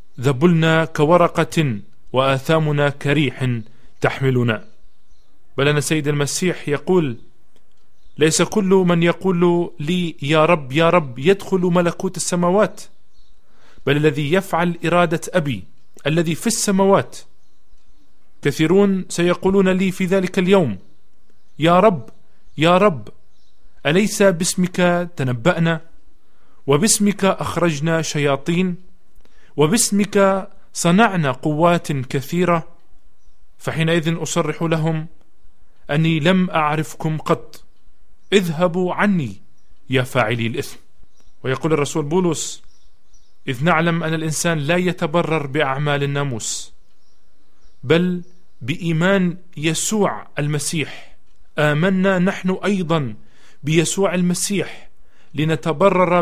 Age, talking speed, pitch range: 40-59, 90 wpm, 145-180 Hz